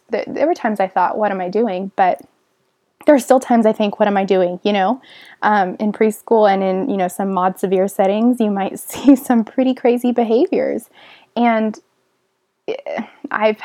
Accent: American